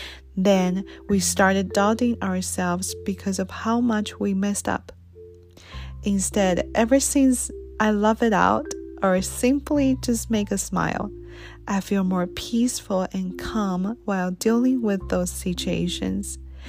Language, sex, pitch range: Chinese, female, 175-220 Hz